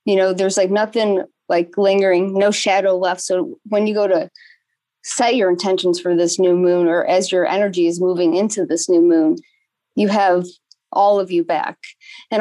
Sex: female